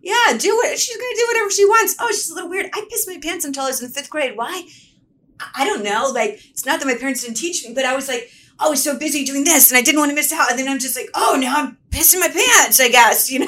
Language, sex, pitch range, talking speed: English, female, 215-290 Hz, 310 wpm